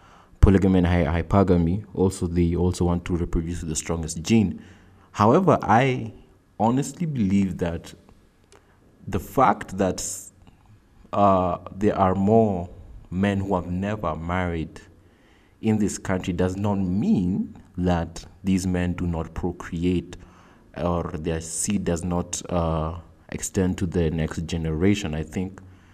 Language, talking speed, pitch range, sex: English, 125 wpm, 85-95 Hz, male